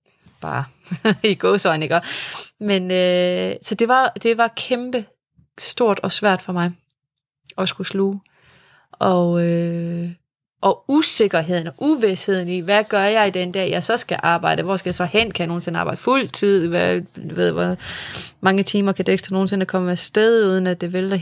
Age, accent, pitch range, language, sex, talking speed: 20-39, native, 165-195 Hz, Danish, female, 170 wpm